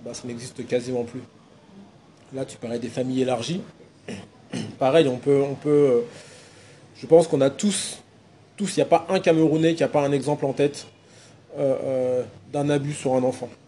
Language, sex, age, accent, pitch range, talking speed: French, male, 20-39, French, 120-150 Hz, 180 wpm